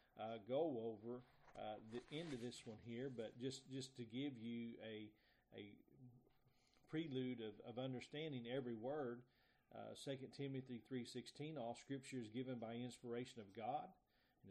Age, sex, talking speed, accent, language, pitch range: 40-59, male, 155 wpm, American, English, 115-130 Hz